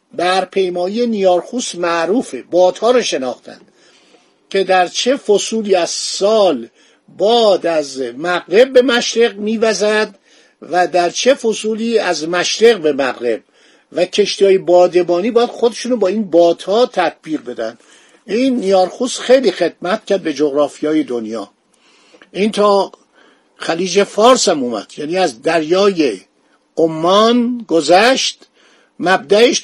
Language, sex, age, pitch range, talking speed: Persian, male, 50-69, 175-220 Hz, 115 wpm